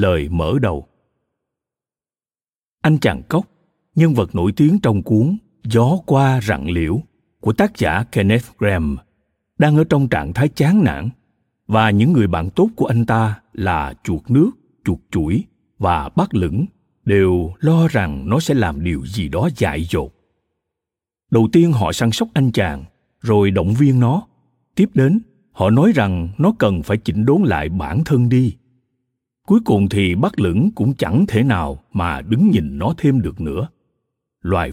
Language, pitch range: Vietnamese, 95-140 Hz